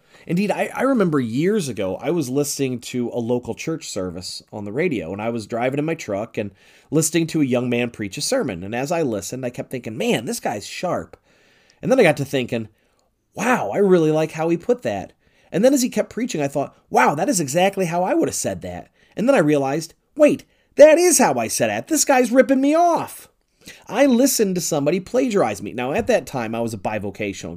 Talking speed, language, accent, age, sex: 230 wpm, English, American, 30-49, male